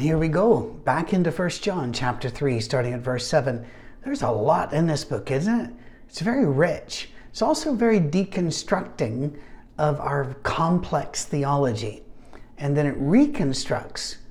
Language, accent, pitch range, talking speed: English, American, 130-180 Hz, 150 wpm